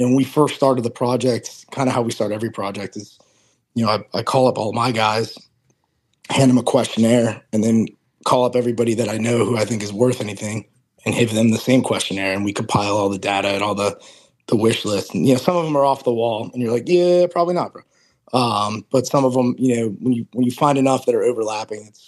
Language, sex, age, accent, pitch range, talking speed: English, male, 20-39, American, 105-130 Hz, 255 wpm